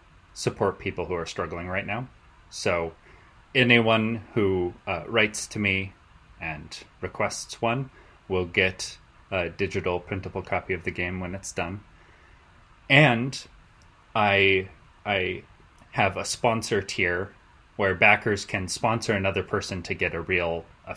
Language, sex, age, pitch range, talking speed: English, male, 20-39, 85-110 Hz, 135 wpm